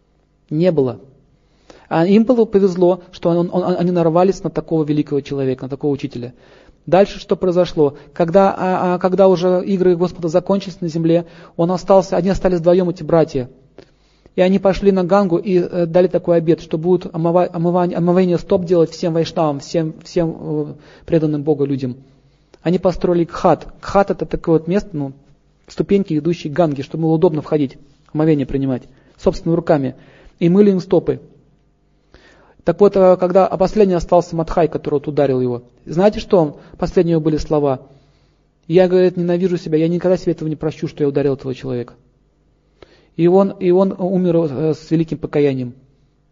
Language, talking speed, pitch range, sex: Russian, 160 wpm, 145-185 Hz, male